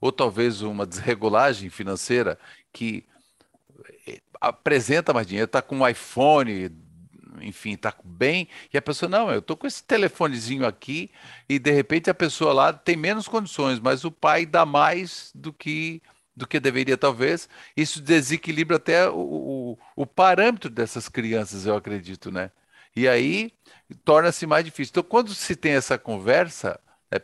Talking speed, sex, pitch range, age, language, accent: 155 wpm, male, 120-170 Hz, 50-69, Portuguese, Brazilian